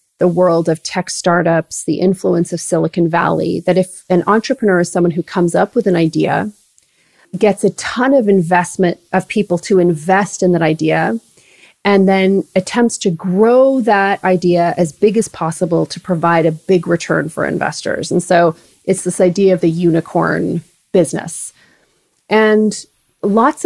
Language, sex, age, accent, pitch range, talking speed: English, female, 30-49, American, 175-205 Hz, 160 wpm